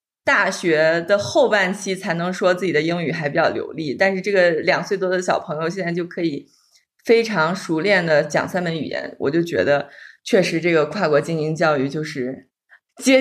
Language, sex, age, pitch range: Chinese, female, 20-39, 170-225 Hz